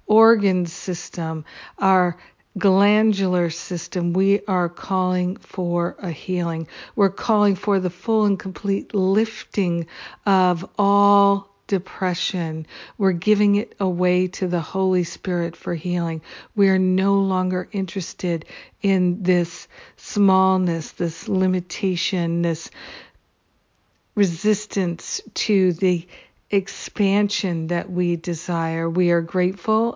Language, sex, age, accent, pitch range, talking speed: English, female, 50-69, American, 175-195 Hz, 105 wpm